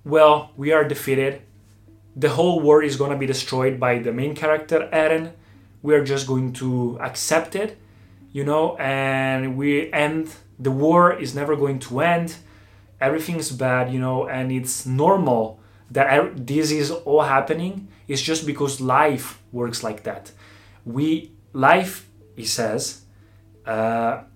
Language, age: Italian, 20-39